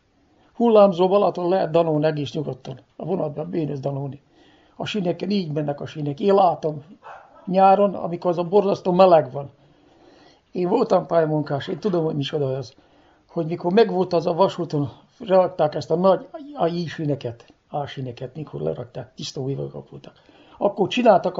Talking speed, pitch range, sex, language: 150 wpm, 150-195 Hz, male, Hungarian